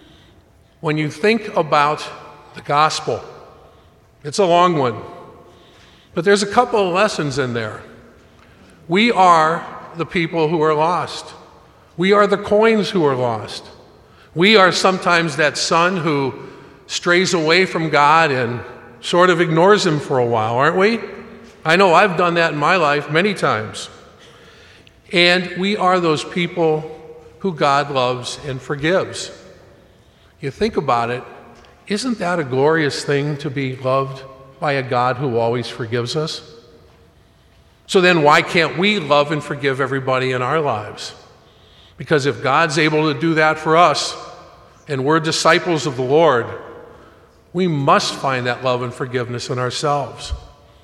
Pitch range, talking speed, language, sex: 135-175 Hz, 150 wpm, English, male